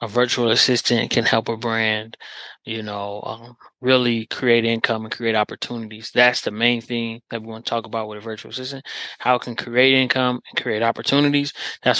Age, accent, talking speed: 20-39, American, 195 wpm